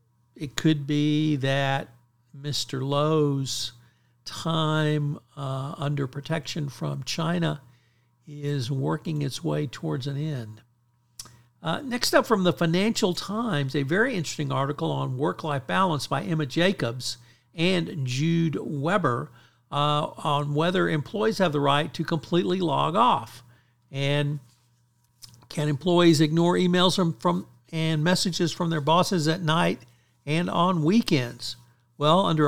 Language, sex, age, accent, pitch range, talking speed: English, male, 60-79, American, 130-165 Hz, 125 wpm